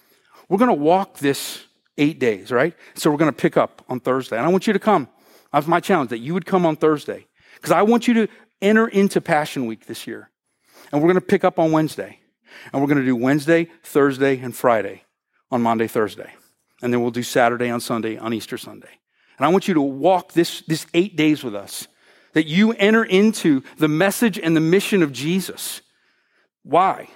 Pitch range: 140-195 Hz